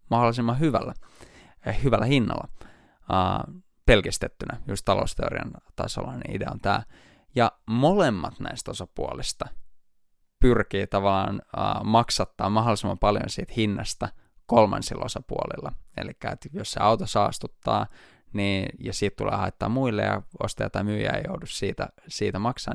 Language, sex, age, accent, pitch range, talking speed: Finnish, male, 20-39, native, 100-125 Hz, 120 wpm